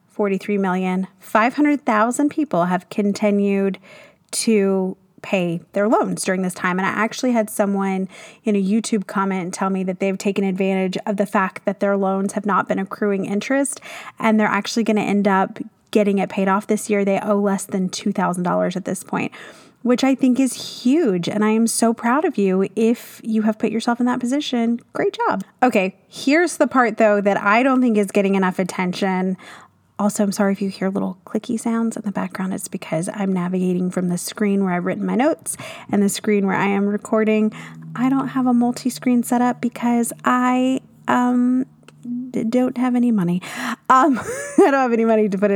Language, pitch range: English, 195-240 Hz